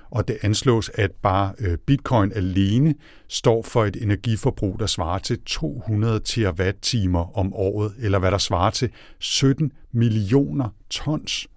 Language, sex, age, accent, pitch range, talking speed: Danish, male, 60-79, native, 95-120 Hz, 135 wpm